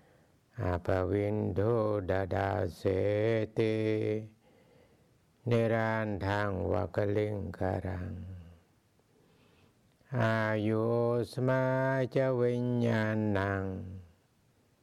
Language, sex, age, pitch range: English, male, 60-79, 95-115 Hz